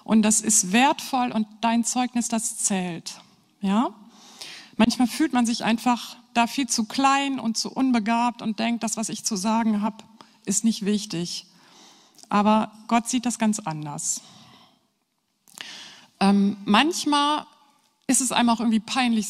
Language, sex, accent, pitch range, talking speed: German, female, German, 210-250 Hz, 145 wpm